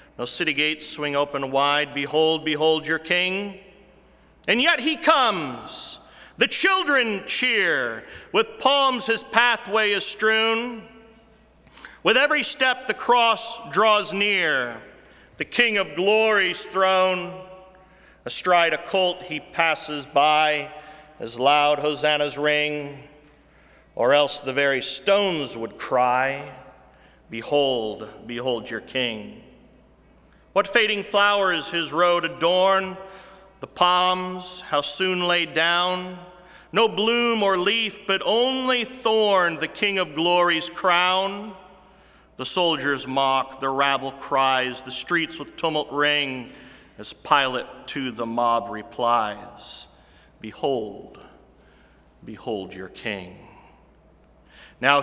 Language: English